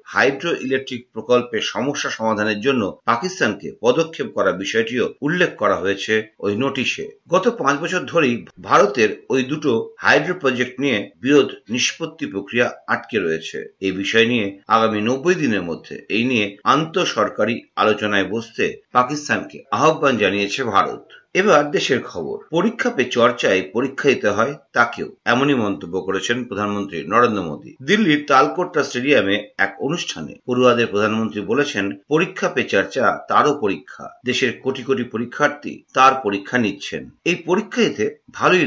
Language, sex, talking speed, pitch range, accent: Bengali, male, 85 wpm, 105-150 Hz, native